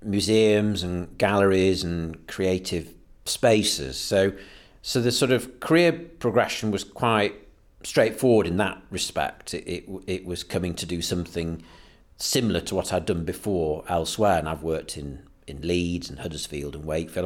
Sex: male